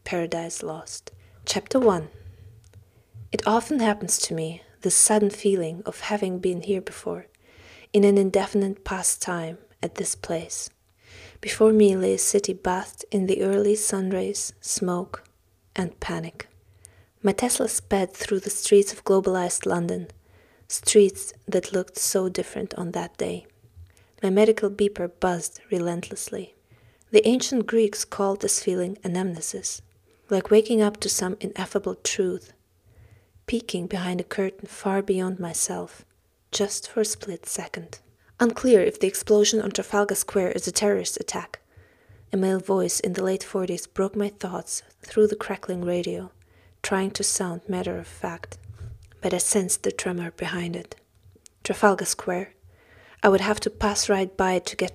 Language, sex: English, female